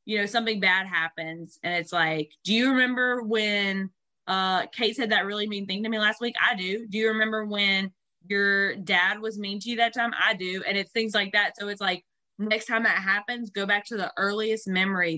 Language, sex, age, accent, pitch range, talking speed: English, female, 20-39, American, 175-220 Hz, 225 wpm